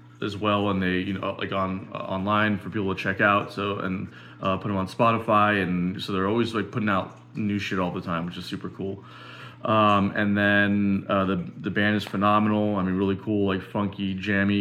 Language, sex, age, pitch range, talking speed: English, male, 20-39, 95-115 Hz, 220 wpm